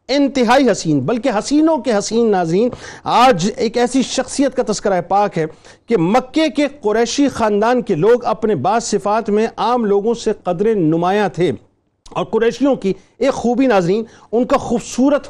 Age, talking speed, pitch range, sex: 50-69, 160 wpm, 210-265 Hz, male